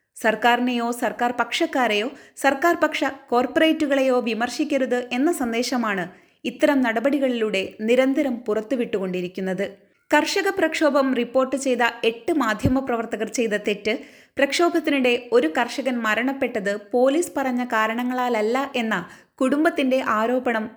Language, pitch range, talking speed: Malayalam, 225-275 Hz, 90 wpm